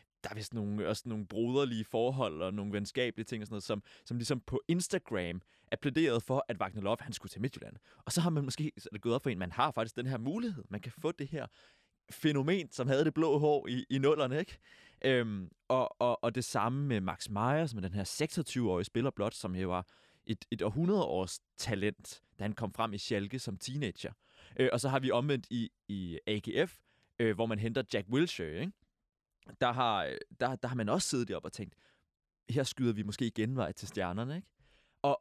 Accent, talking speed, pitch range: native, 220 wpm, 105-140 Hz